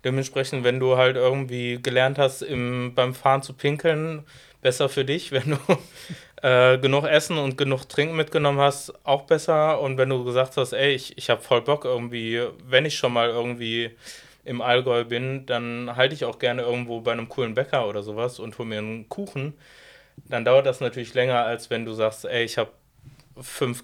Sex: male